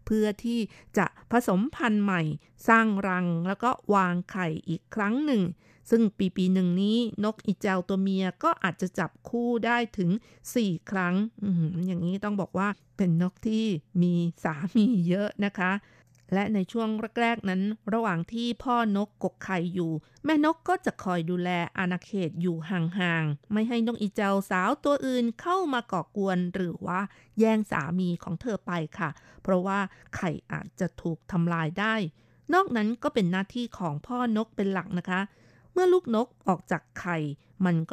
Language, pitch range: Thai, 180-230 Hz